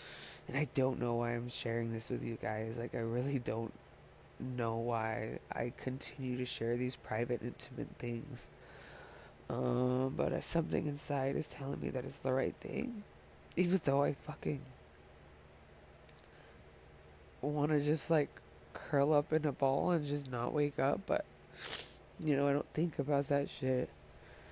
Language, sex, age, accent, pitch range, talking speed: English, female, 20-39, American, 115-145 Hz, 155 wpm